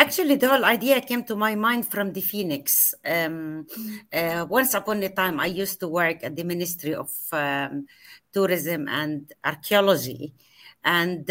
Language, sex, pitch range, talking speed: English, female, 170-235 Hz, 160 wpm